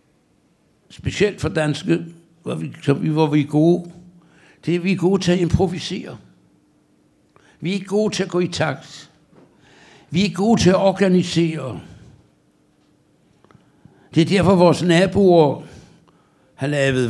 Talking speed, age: 125 wpm, 60-79